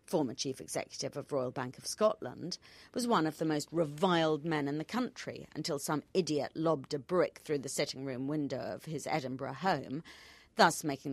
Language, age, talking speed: English, 40-59, 185 wpm